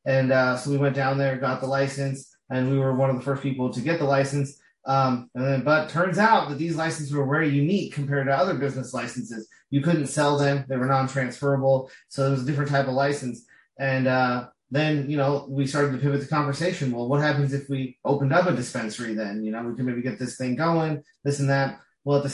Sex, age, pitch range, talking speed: male, 30-49, 130-145 Hz, 245 wpm